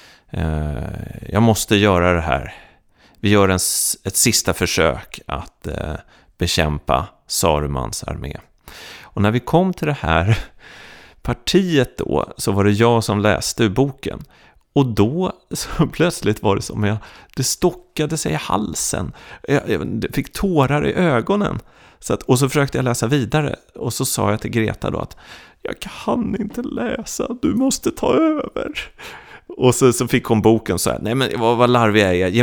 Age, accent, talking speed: 30-49, native, 165 wpm